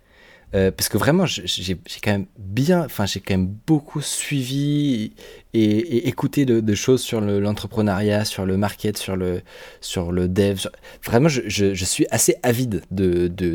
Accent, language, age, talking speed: French, French, 20-39, 185 wpm